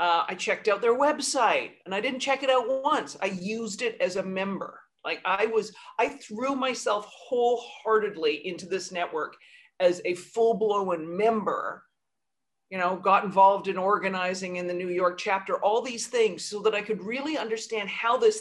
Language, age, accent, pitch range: English, 50-69, American, 185-265 Hz